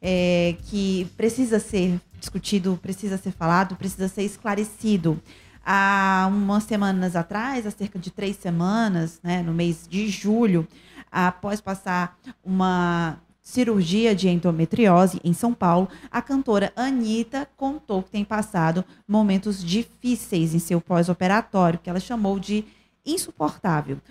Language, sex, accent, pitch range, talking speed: Portuguese, female, Brazilian, 185-230 Hz, 125 wpm